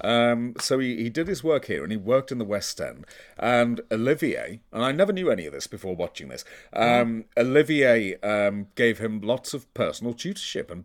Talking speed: 205 wpm